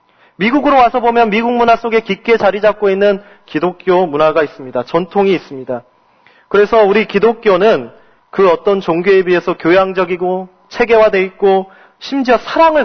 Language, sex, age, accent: Korean, male, 40-59, native